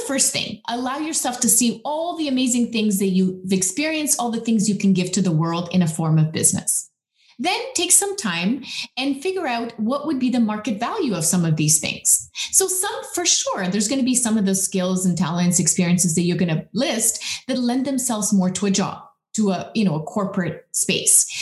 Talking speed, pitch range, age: 220 wpm, 185-260 Hz, 30-49